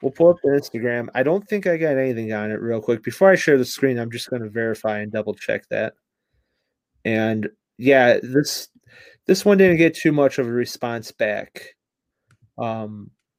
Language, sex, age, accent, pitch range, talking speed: English, male, 30-49, American, 115-160 Hz, 190 wpm